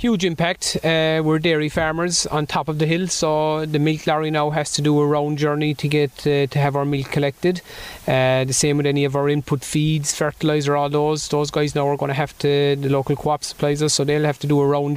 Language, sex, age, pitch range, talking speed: English, male, 30-49, 140-155 Hz, 250 wpm